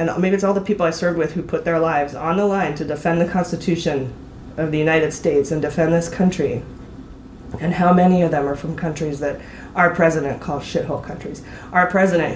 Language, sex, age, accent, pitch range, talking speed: English, female, 20-39, American, 145-175 Hz, 215 wpm